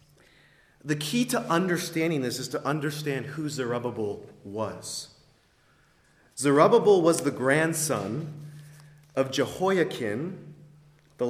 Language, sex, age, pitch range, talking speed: English, male, 30-49, 130-160 Hz, 95 wpm